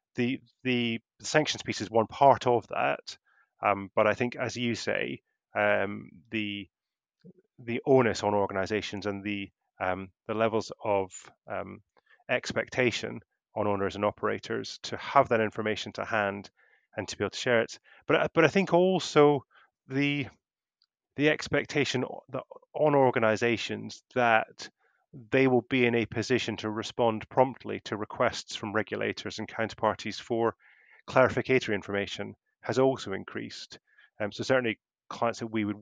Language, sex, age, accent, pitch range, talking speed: English, male, 30-49, British, 105-130 Hz, 145 wpm